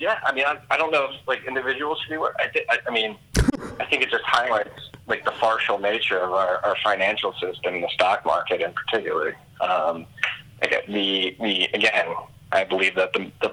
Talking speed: 195 wpm